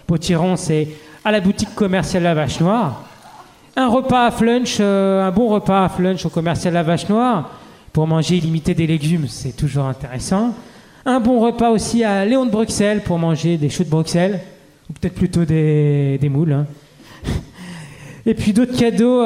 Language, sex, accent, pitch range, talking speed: French, male, French, 155-200 Hz, 180 wpm